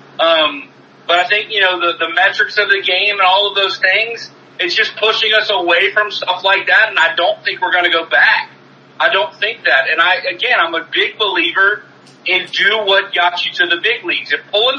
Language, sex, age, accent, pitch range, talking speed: English, male, 40-59, American, 185-230 Hz, 230 wpm